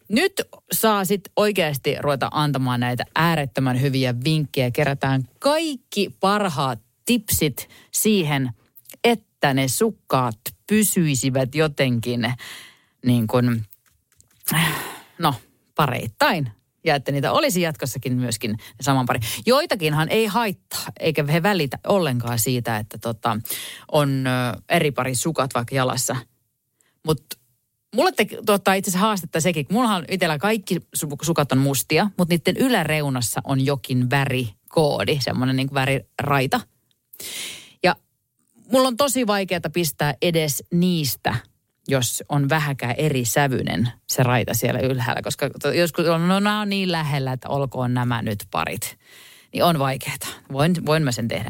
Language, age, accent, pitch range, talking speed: Finnish, 30-49, native, 125-175 Hz, 130 wpm